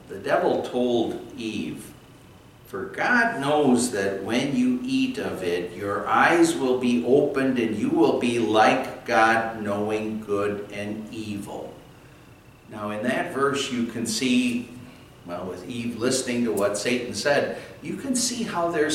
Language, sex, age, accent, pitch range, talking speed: English, male, 60-79, American, 110-160 Hz, 150 wpm